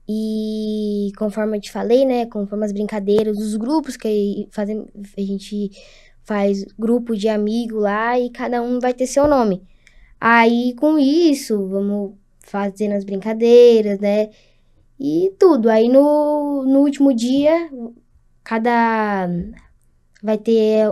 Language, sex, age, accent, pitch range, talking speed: Portuguese, female, 10-29, Brazilian, 205-240 Hz, 125 wpm